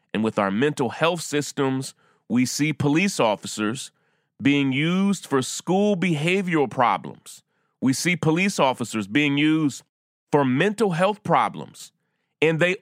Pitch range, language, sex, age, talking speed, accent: 125-170 Hz, English, male, 30-49, 130 wpm, American